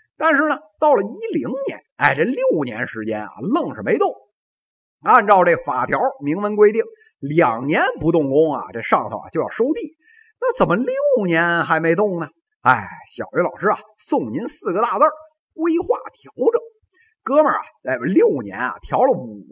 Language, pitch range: Chinese, 255-435 Hz